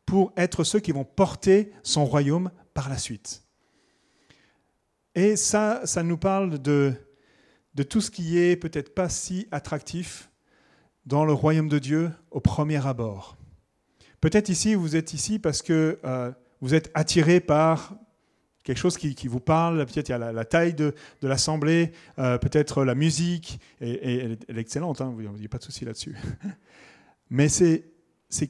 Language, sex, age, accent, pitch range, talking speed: French, male, 40-59, French, 130-165 Hz, 170 wpm